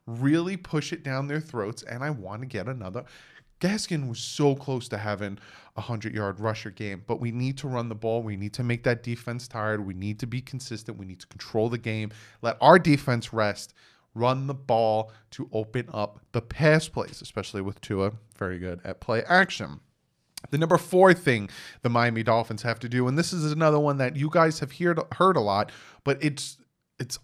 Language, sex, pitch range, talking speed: English, male, 110-140 Hz, 210 wpm